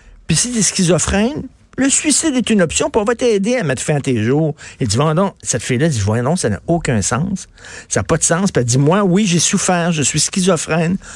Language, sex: French, male